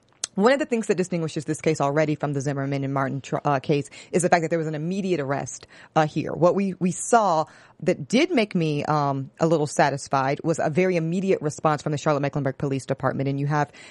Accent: American